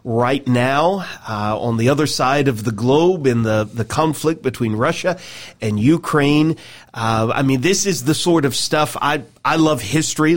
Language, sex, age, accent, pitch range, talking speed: English, male, 40-59, American, 130-160 Hz, 180 wpm